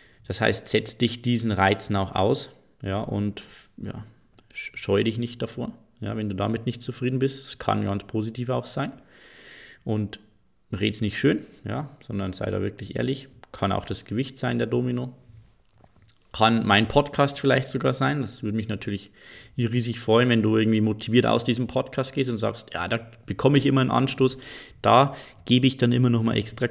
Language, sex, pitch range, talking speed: German, male, 105-125 Hz, 180 wpm